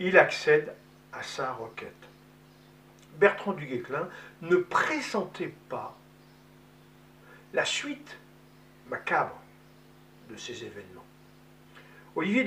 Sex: male